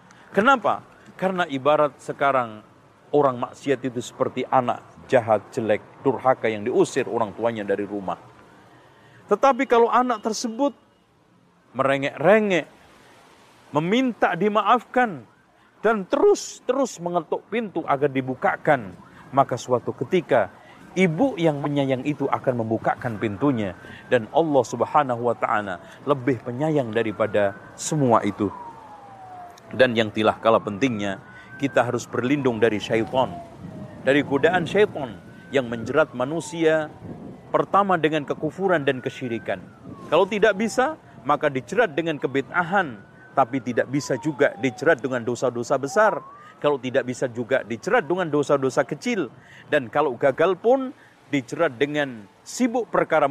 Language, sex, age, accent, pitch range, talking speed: Indonesian, male, 40-59, native, 130-180 Hz, 115 wpm